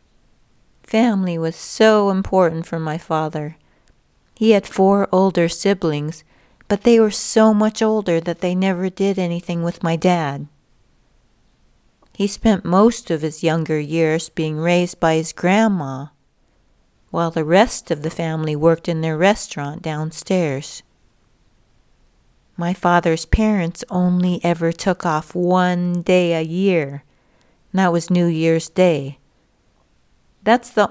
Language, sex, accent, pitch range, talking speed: English, female, American, 160-200 Hz, 130 wpm